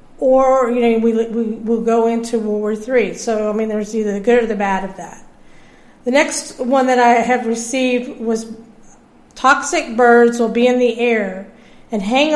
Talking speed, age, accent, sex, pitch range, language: 195 wpm, 50-69, American, female, 225-255 Hz, English